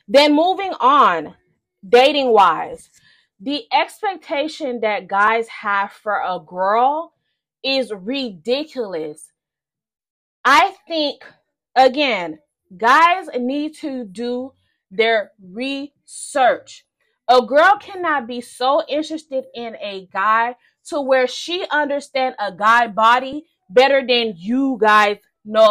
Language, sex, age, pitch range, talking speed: English, female, 20-39, 230-310 Hz, 105 wpm